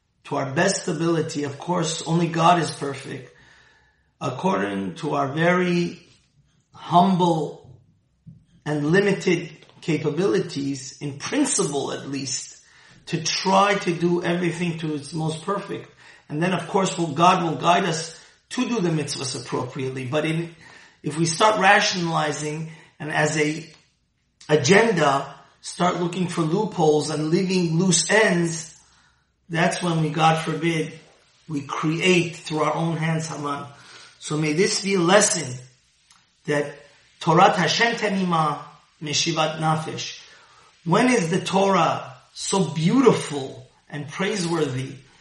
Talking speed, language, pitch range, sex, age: 125 wpm, English, 150-180 Hz, male, 30-49